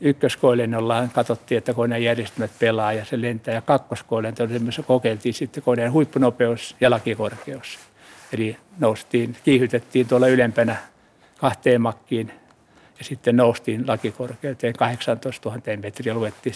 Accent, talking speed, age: native, 120 wpm, 60-79